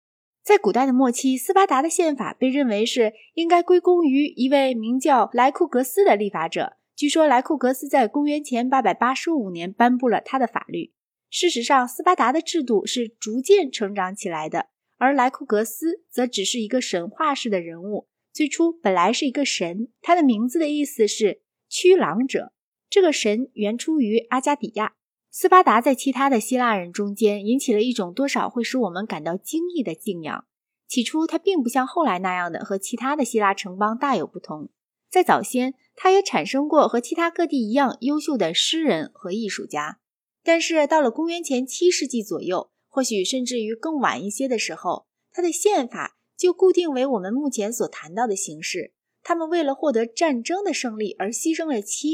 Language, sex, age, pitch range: Chinese, female, 20-39, 220-320 Hz